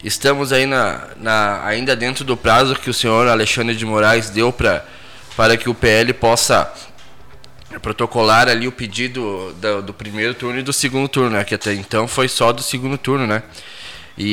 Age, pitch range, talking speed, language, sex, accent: 20-39, 120-145 Hz, 195 wpm, Portuguese, male, Brazilian